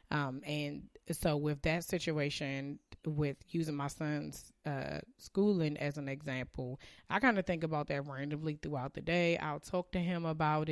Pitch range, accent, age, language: 150-185 Hz, American, 20-39, English